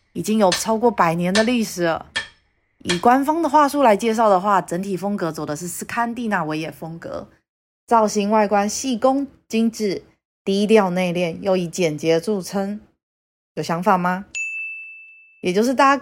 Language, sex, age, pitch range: Chinese, female, 30-49, 170-225 Hz